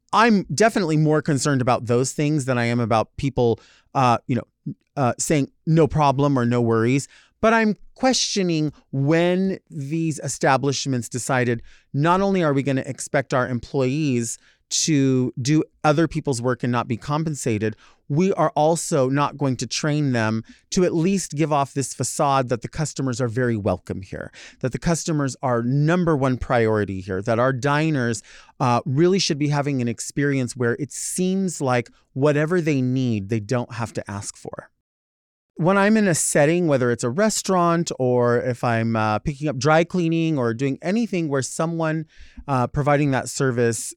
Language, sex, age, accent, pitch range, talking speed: English, male, 30-49, American, 120-155 Hz, 170 wpm